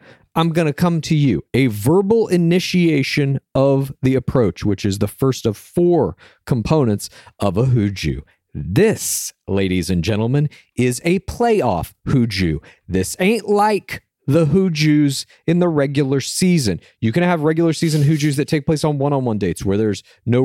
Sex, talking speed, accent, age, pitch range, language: male, 160 wpm, American, 40-59, 115-170 Hz, English